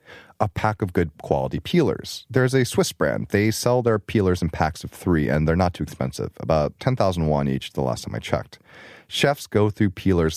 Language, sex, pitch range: Korean, male, 80-110 Hz